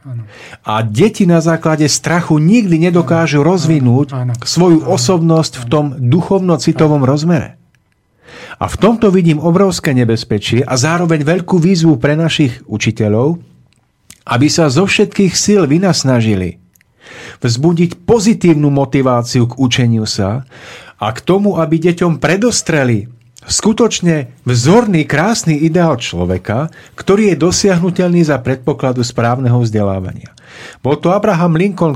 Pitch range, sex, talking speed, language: 125-175 Hz, male, 115 wpm, Slovak